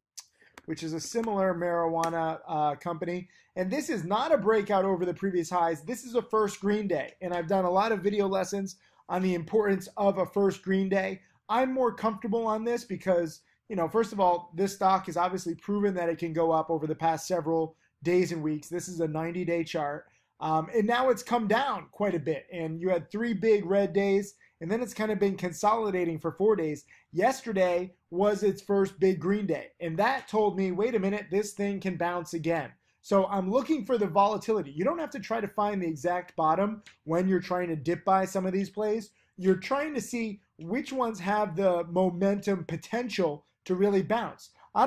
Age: 20-39